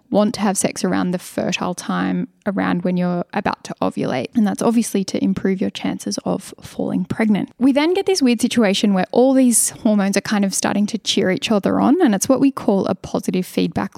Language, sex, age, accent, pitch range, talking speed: English, female, 10-29, Australian, 190-240 Hz, 220 wpm